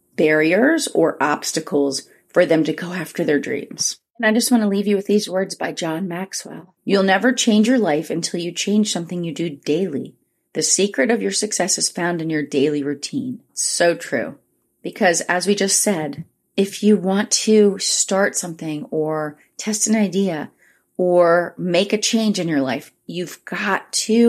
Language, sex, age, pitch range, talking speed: English, female, 30-49, 155-200 Hz, 180 wpm